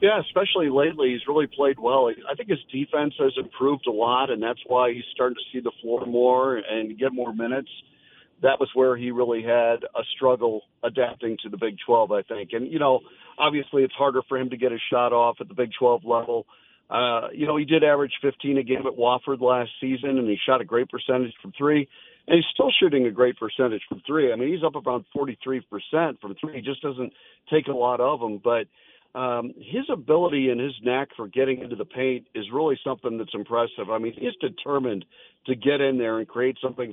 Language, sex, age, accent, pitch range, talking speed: English, male, 50-69, American, 115-140 Hz, 220 wpm